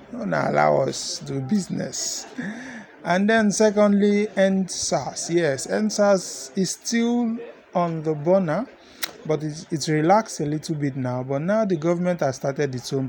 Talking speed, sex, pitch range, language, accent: 150 wpm, male, 145-195 Hz, English, Nigerian